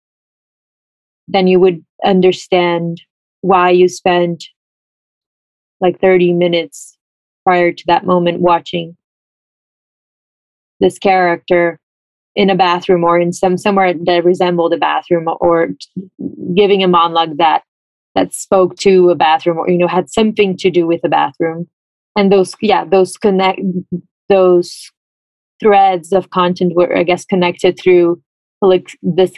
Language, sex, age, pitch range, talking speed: English, female, 20-39, 170-185 Hz, 130 wpm